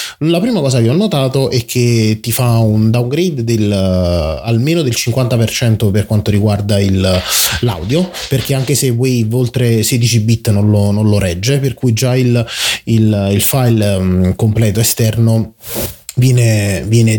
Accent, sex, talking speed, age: native, male, 165 wpm, 20-39